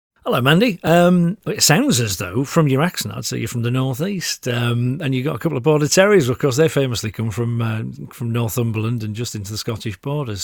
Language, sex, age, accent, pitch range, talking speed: English, male, 40-59, British, 110-140 Hz, 230 wpm